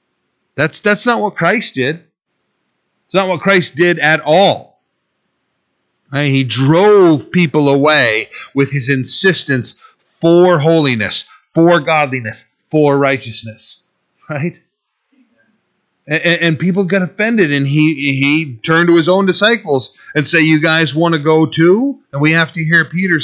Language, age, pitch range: English, 40-59, 145-185 Hz